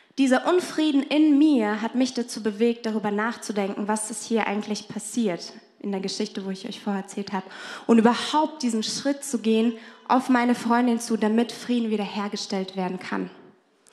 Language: German